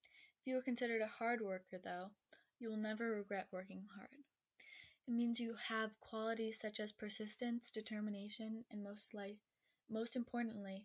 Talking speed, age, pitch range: 150 wpm, 10-29, 210-245 Hz